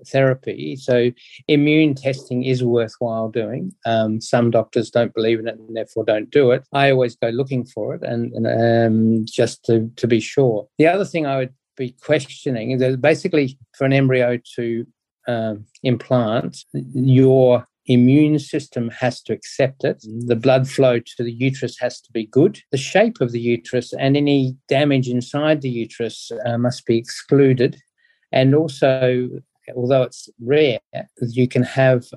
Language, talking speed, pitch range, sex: English, 165 wpm, 120-135 Hz, male